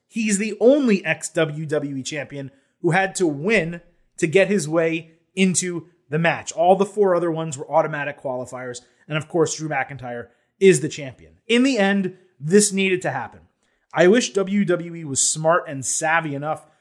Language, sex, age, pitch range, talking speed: English, male, 30-49, 155-195 Hz, 170 wpm